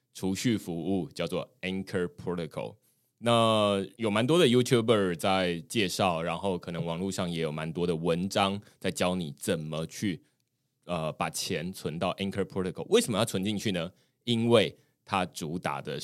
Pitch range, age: 85-105 Hz, 20-39